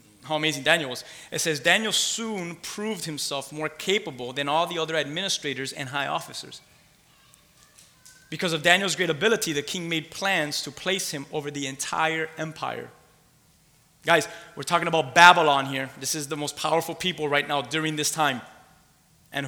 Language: English